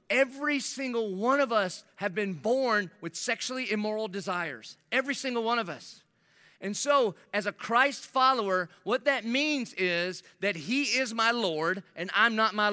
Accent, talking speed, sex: American, 170 wpm, male